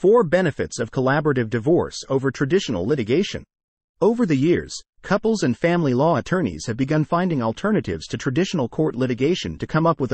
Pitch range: 120-170 Hz